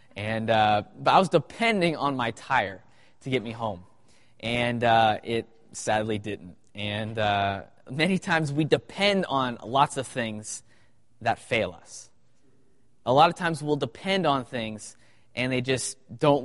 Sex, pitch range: male, 115-150 Hz